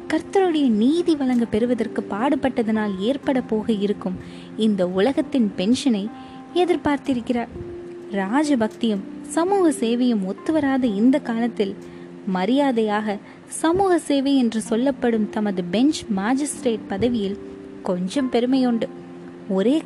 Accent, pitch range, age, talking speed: native, 220-285 Hz, 20-39, 90 wpm